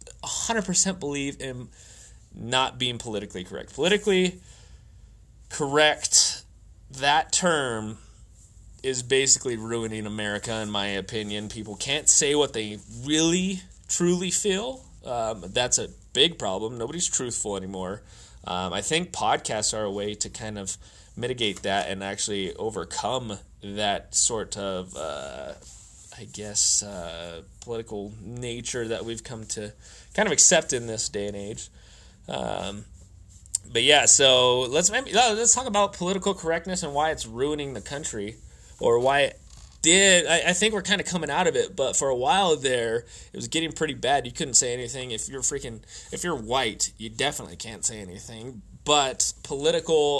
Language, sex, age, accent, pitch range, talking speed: English, male, 20-39, American, 100-155 Hz, 150 wpm